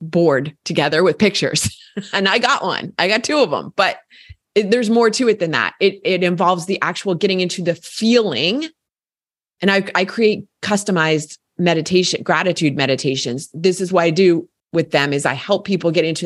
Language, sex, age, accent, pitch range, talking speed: English, female, 30-49, American, 160-205 Hz, 190 wpm